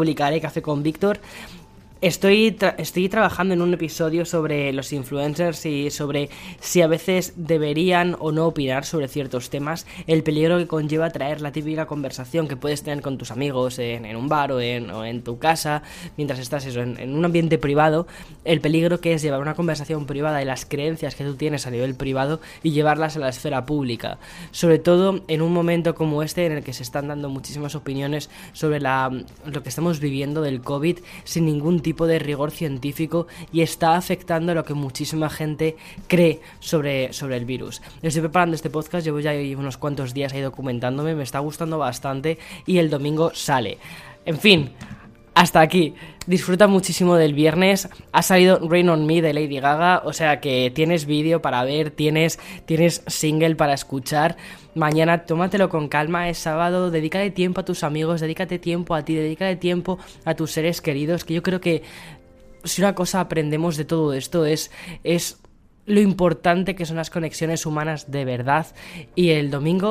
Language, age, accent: Spanish, 10-29, Spanish